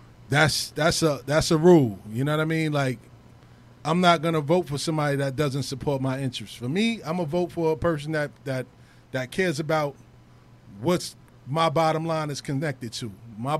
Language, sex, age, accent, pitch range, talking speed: English, male, 20-39, American, 150-190 Hz, 195 wpm